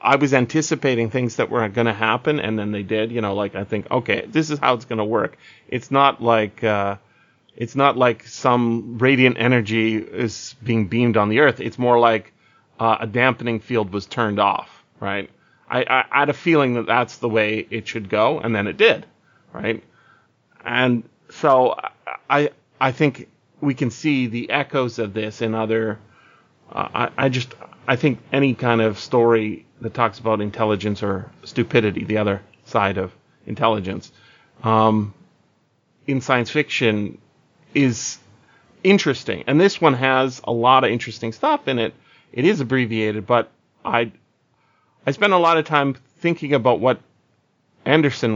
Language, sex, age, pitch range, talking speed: English, male, 30-49, 110-135 Hz, 170 wpm